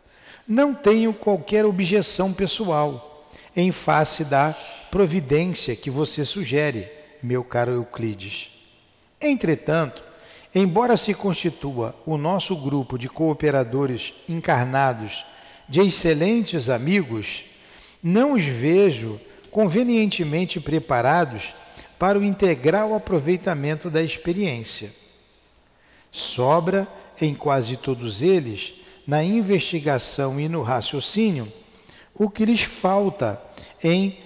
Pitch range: 135-185 Hz